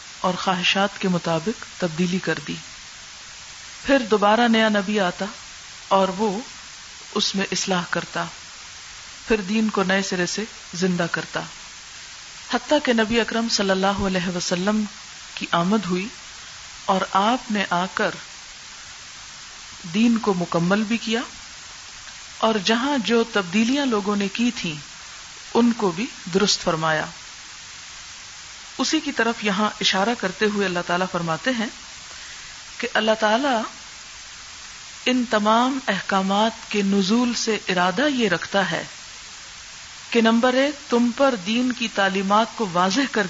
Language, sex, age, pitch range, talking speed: Urdu, female, 50-69, 190-240 Hz, 130 wpm